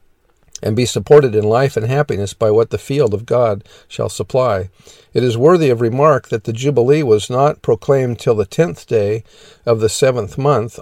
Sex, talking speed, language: male, 190 wpm, English